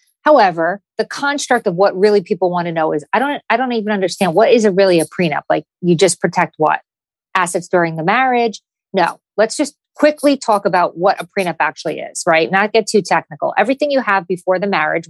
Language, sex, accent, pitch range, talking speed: English, female, American, 170-210 Hz, 215 wpm